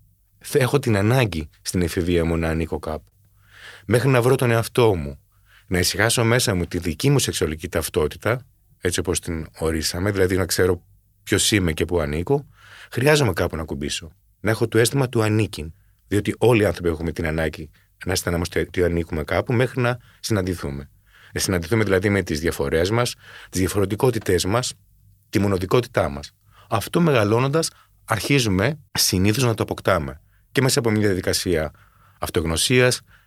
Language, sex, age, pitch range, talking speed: Greek, male, 30-49, 90-115 Hz, 155 wpm